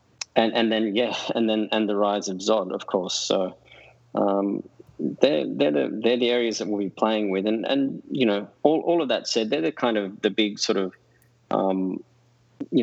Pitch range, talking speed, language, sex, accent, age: 100-110 Hz, 210 wpm, English, male, Australian, 20-39